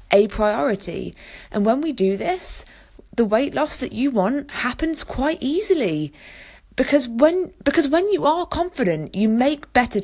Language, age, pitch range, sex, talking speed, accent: English, 20-39, 195-275 Hz, female, 155 wpm, British